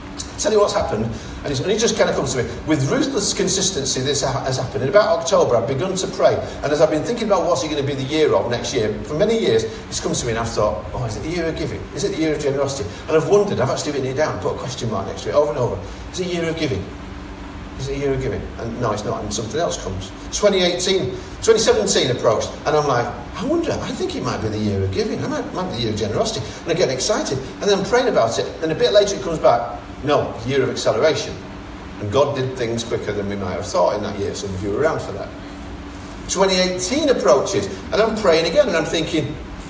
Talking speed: 270 wpm